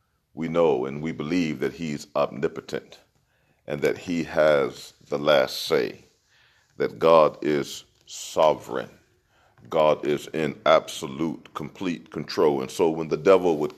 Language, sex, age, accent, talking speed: English, male, 40-59, American, 135 wpm